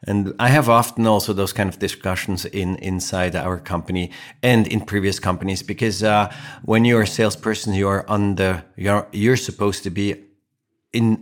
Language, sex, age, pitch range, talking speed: English, male, 50-69, 90-110 Hz, 175 wpm